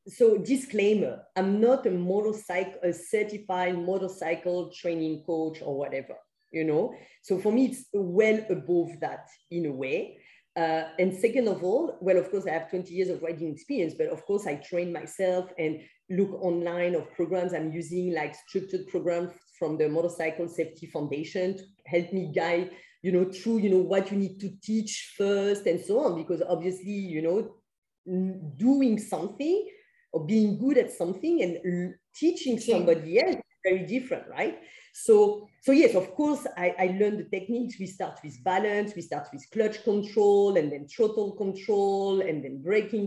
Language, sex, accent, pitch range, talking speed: English, female, French, 170-215 Hz, 170 wpm